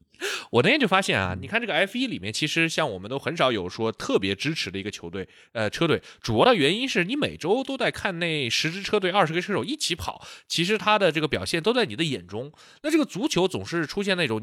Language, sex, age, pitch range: Chinese, male, 20-39, 110-180 Hz